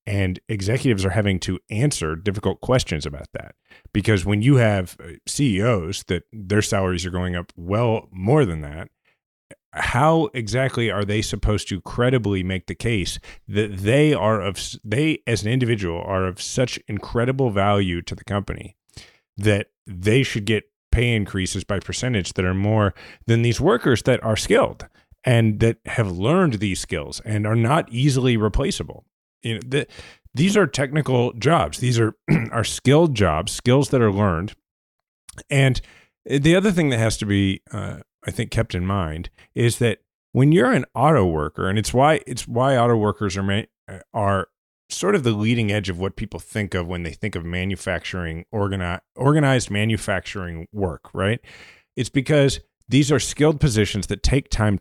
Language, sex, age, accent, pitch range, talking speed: English, male, 30-49, American, 95-125 Hz, 165 wpm